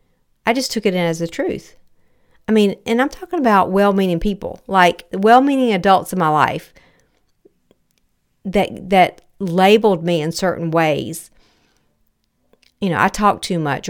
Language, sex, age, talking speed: English, female, 50-69, 150 wpm